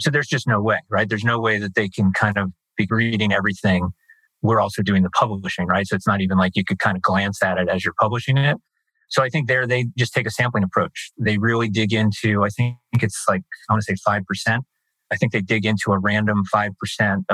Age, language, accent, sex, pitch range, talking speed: 30-49, English, American, male, 95-115 Hz, 240 wpm